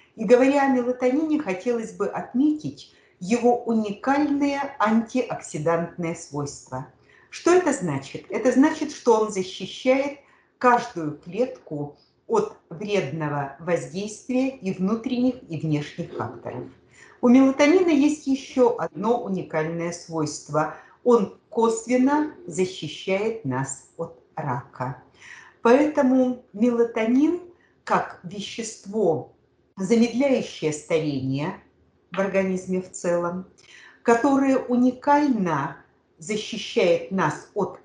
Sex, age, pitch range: female, 50-69, 175-265 Hz